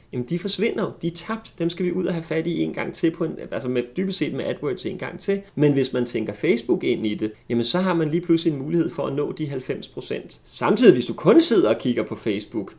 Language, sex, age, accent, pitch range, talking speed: Danish, male, 30-49, native, 125-180 Hz, 270 wpm